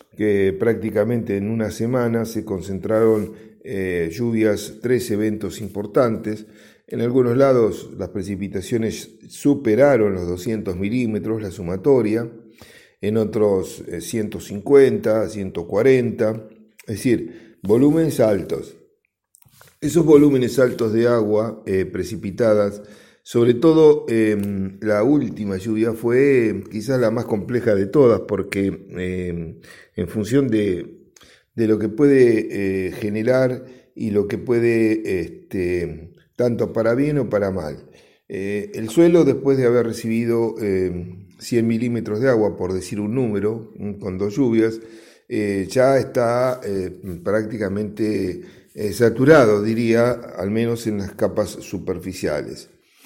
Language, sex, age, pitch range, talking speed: Spanish, male, 50-69, 100-120 Hz, 120 wpm